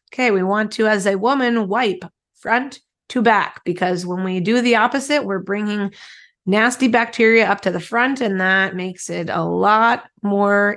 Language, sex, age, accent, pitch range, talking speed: English, female, 20-39, American, 185-225 Hz, 180 wpm